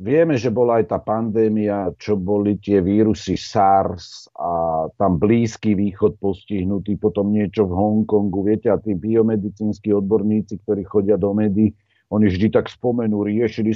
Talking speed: 150 wpm